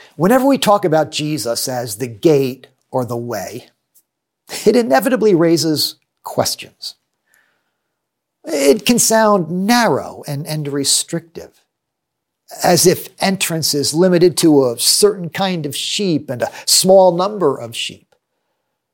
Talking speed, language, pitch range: 125 wpm, English, 145-205 Hz